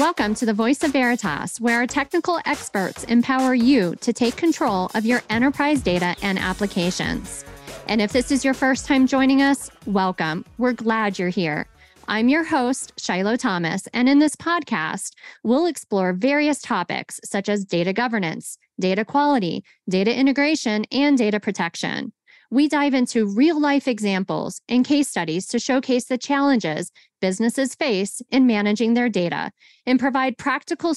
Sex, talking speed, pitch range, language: female, 155 wpm, 205-280 Hz, English